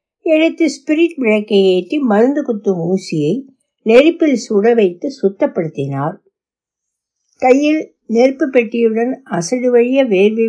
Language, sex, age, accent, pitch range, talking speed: Tamil, female, 60-79, native, 175-250 Hz, 90 wpm